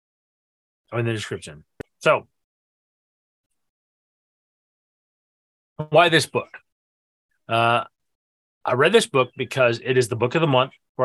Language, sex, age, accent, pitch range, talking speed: English, male, 30-49, American, 110-155 Hz, 115 wpm